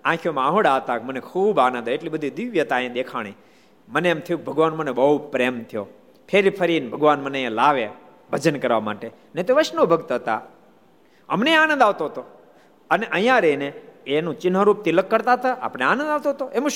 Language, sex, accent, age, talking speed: Gujarati, male, native, 50-69, 185 wpm